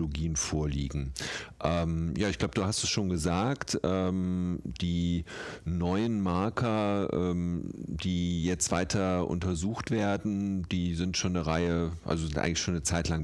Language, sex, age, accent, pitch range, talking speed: German, male, 50-69, German, 80-95 Hz, 145 wpm